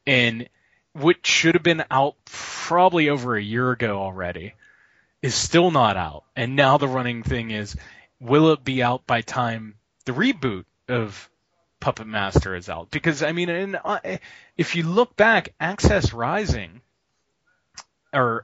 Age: 20-39